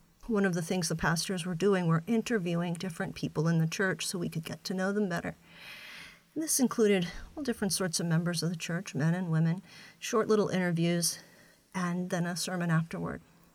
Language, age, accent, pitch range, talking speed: English, 40-59, American, 165-200 Hz, 195 wpm